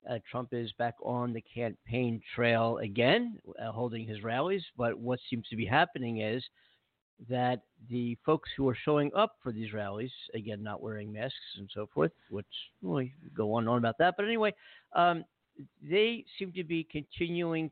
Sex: male